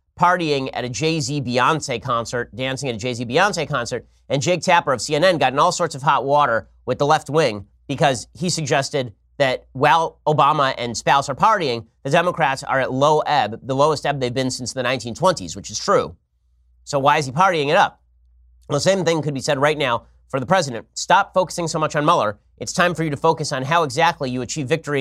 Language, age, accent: English, 30-49, American